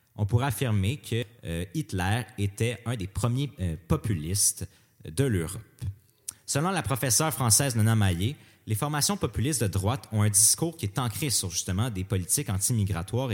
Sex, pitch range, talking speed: male, 95-130 Hz, 160 wpm